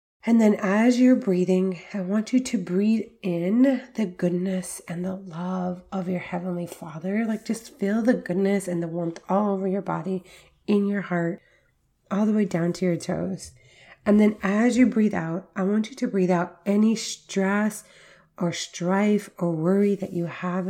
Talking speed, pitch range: 185 wpm, 175-205 Hz